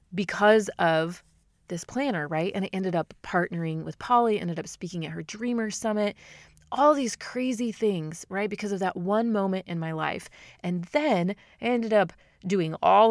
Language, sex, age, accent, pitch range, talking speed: English, female, 30-49, American, 160-200 Hz, 180 wpm